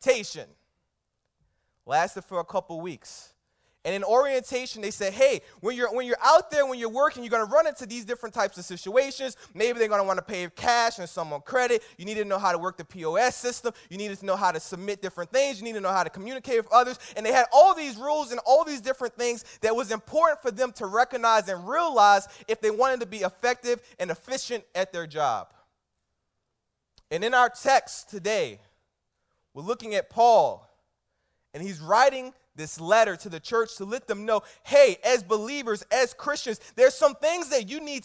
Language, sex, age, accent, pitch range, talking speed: English, male, 20-39, American, 195-260 Hz, 210 wpm